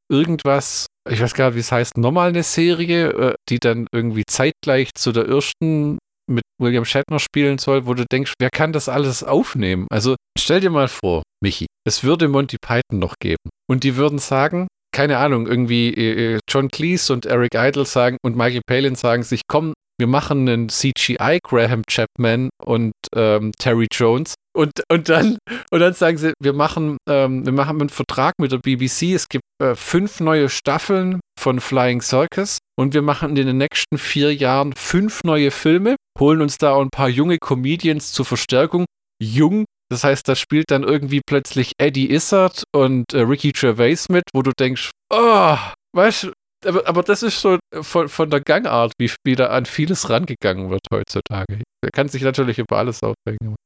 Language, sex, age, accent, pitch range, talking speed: German, male, 40-59, German, 120-155 Hz, 185 wpm